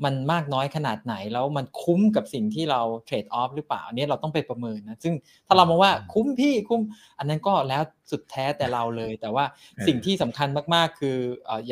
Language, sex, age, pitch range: Thai, male, 20-39, 120-155 Hz